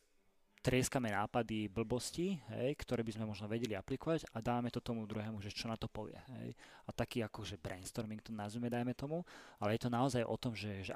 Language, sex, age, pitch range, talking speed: Slovak, male, 20-39, 105-120 Hz, 210 wpm